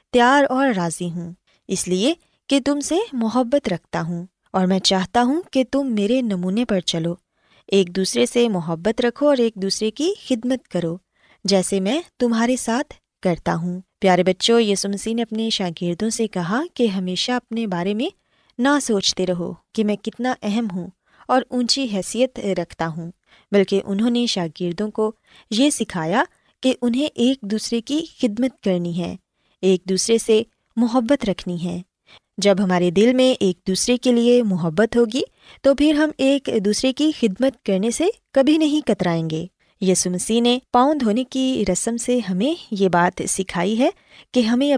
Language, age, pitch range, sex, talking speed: Urdu, 20-39, 190-255 Hz, female, 165 wpm